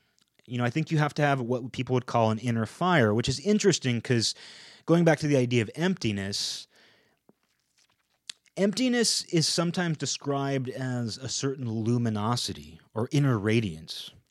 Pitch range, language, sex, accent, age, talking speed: 105-135 Hz, English, male, American, 30-49, 155 wpm